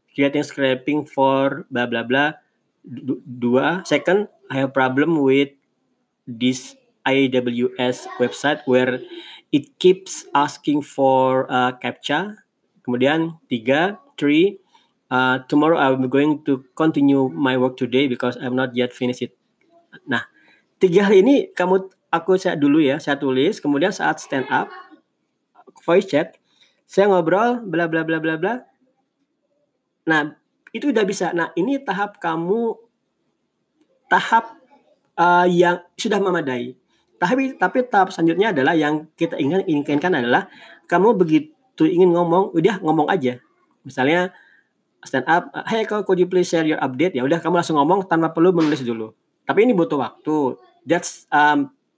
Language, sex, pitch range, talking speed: Indonesian, male, 130-190 Hz, 130 wpm